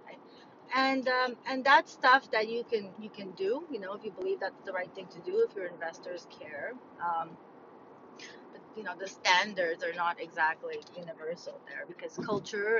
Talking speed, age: 185 wpm, 30-49